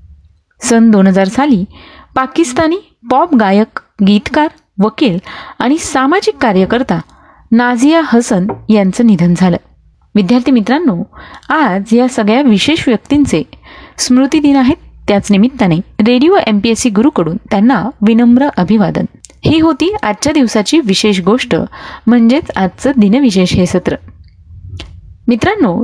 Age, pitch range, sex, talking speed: 30-49, 205-270 Hz, female, 110 wpm